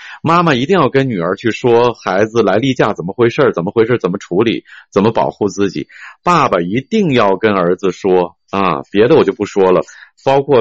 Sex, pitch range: male, 100-145 Hz